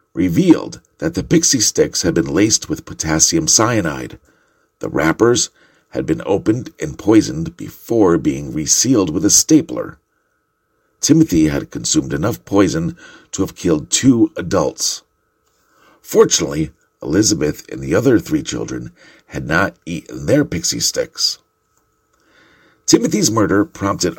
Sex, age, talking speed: male, 50-69, 125 wpm